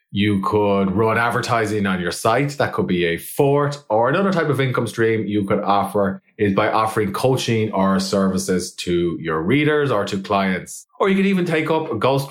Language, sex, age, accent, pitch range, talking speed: English, male, 20-39, Irish, 100-140 Hz, 195 wpm